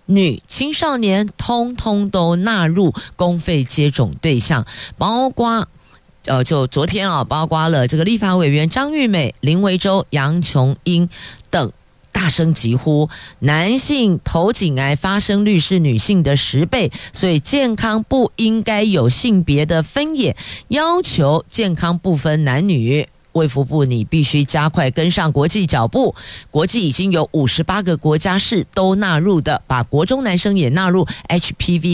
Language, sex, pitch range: Chinese, female, 140-195 Hz